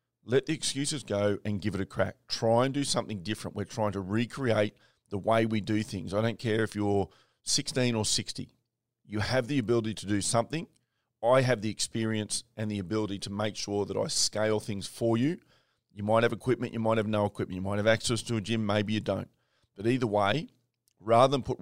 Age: 30-49